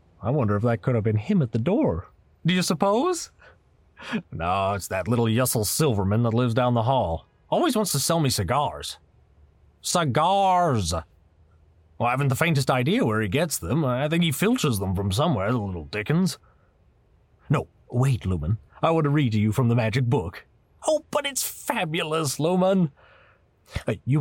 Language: English